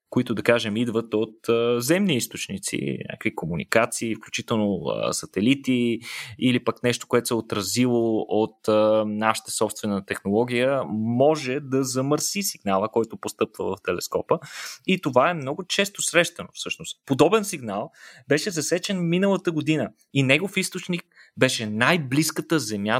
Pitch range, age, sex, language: 115-160 Hz, 20-39, male, Bulgarian